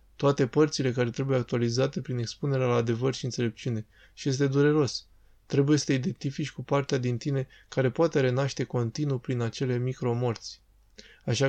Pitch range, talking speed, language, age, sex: 125-150 Hz, 155 wpm, Romanian, 20-39, male